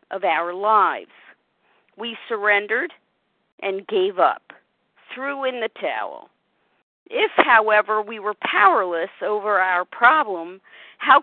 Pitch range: 210-310 Hz